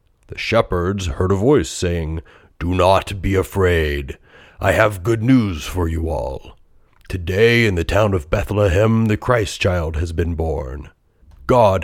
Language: English